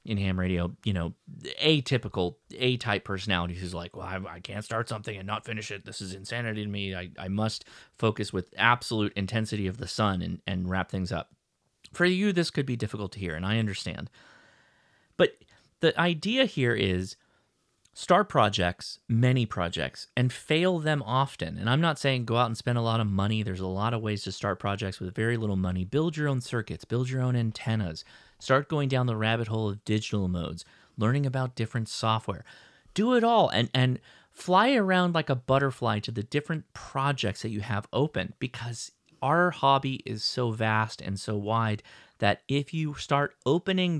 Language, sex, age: English, male, 30-49